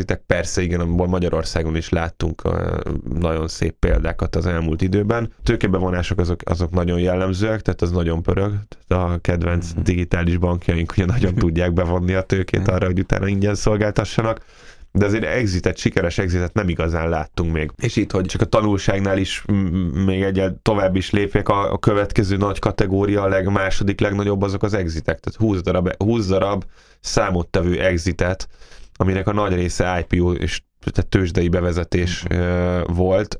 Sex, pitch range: male, 90-100 Hz